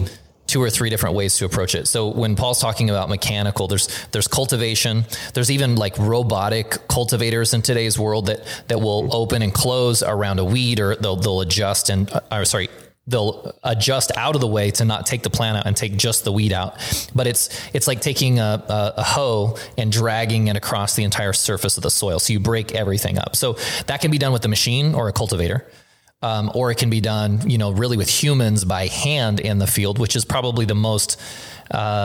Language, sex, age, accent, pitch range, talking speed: English, male, 20-39, American, 100-120 Hz, 215 wpm